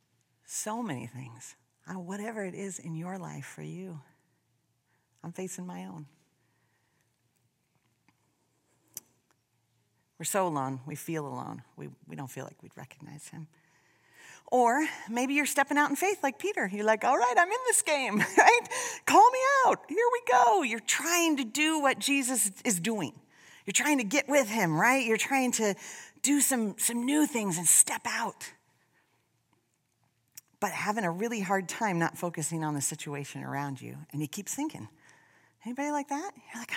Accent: American